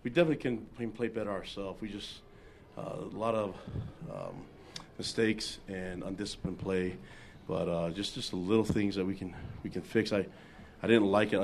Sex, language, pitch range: male, English, 90-105 Hz